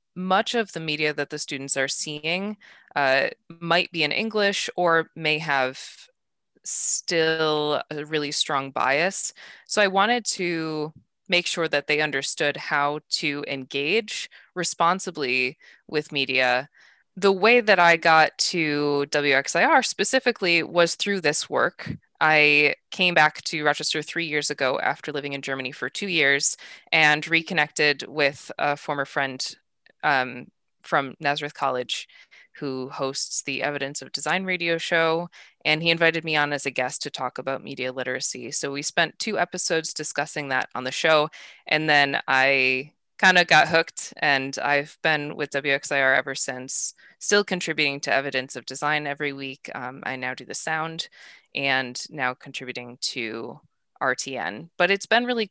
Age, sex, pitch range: 20-39, female, 140-170 Hz